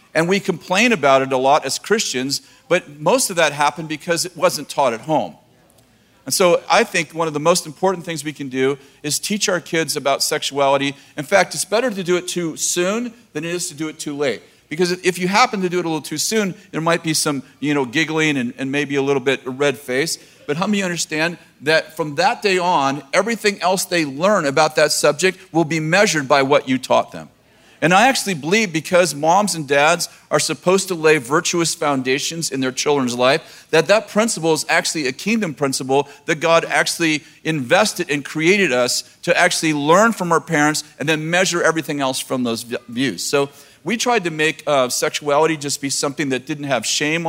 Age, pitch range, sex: 40-59, 140-175 Hz, male